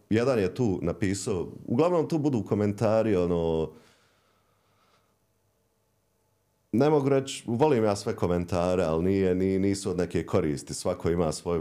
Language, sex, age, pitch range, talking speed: Croatian, male, 30-49, 75-100 Hz, 130 wpm